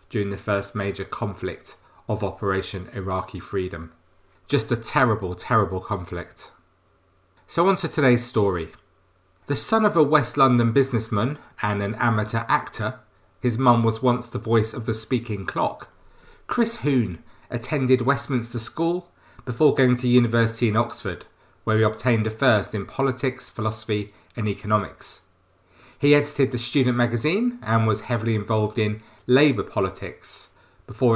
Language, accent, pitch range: English, British, 100-125 Hz